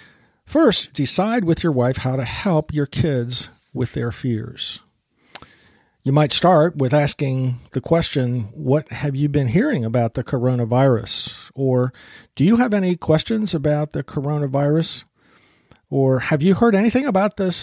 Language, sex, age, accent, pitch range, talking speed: English, male, 50-69, American, 130-180 Hz, 150 wpm